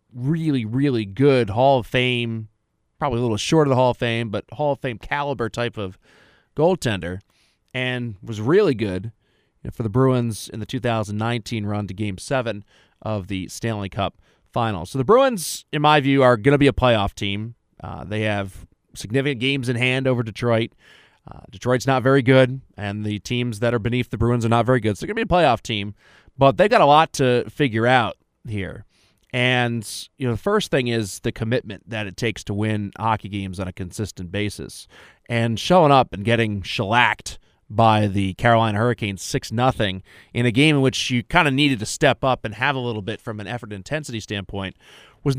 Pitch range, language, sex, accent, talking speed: 105-130 Hz, English, male, American, 200 wpm